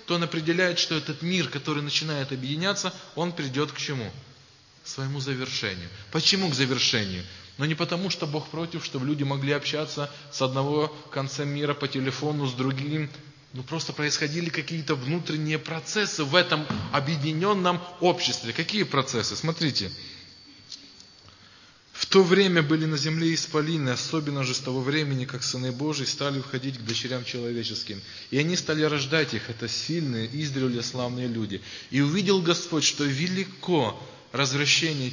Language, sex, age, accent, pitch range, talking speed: Russian, male, 20-39, native, 130-165 Hz, 145 wpm